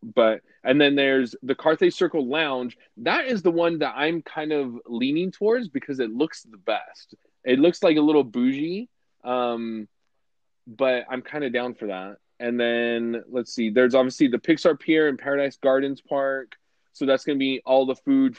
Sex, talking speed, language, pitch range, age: male, 190 wpm, English, 120-145 Hz, 20-39